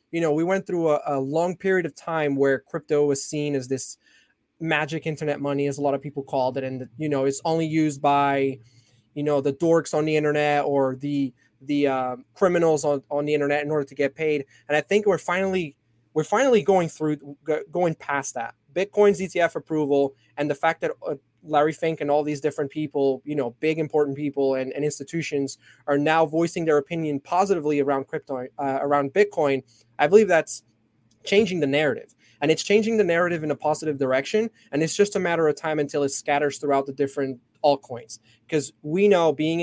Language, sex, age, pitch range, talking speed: English, male, 20-39, 140-160 Hz, 205 wpm